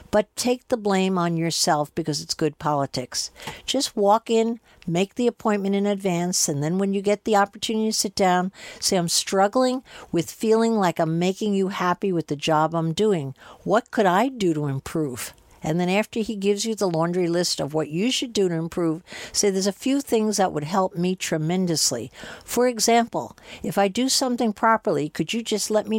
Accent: American